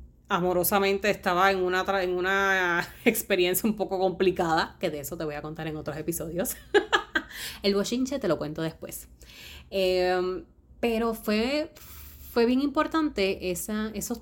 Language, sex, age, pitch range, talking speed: Spanish, female, 20-39, 165-225 Hz, 150 wpm